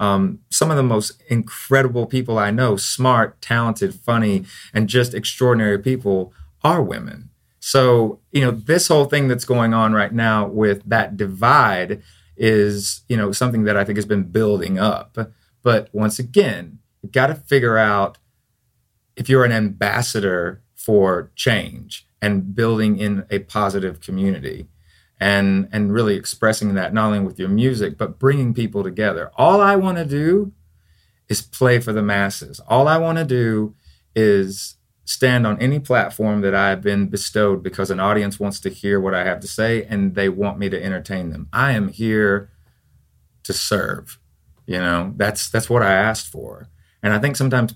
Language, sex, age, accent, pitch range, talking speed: English, male, 30-49, American, 100-120 Hz, 170 wpm